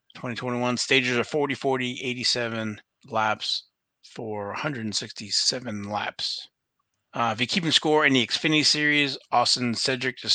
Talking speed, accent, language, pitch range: 135 wpm, American, English, 110-130 Hz